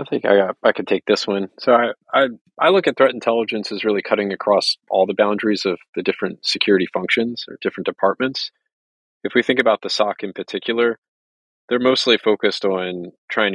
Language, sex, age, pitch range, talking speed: English, male, 30-49, 95-110 Hz, 200 wpm